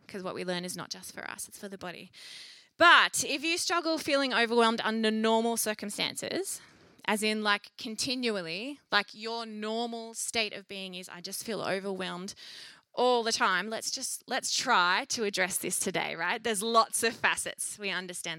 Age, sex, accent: 20-39, female, Australian